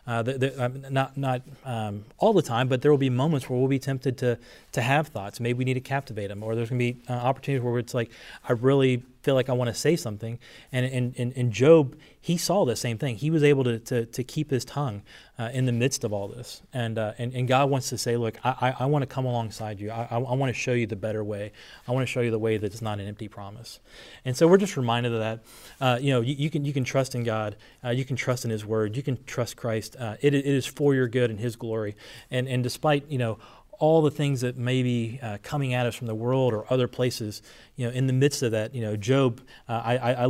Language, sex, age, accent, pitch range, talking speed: English, male, 30-49, American, 115-135 Hz, 275 wpm